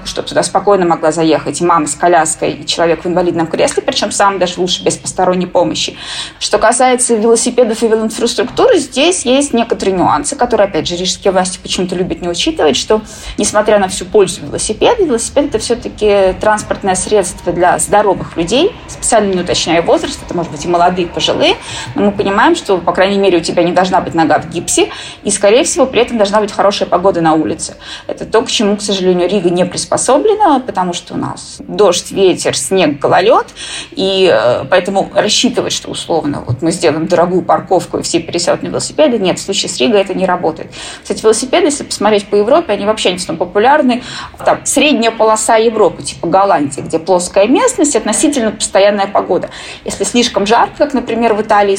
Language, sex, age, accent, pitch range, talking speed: Russian, female, 20-39, native, 175-230 Hz, 185 wpm